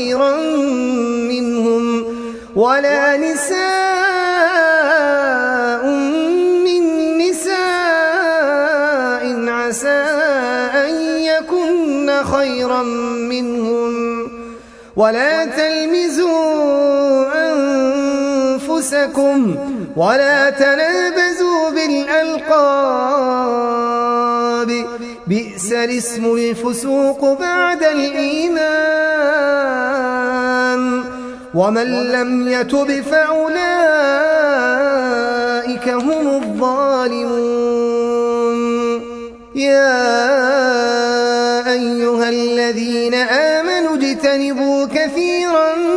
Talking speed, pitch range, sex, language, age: 45 wpm, 240-310 Hz, male, Arabic, 30-49